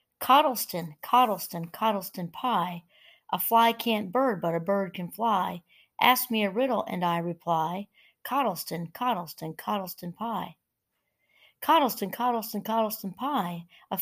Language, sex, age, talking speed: English, female, 60-79, 125 wpm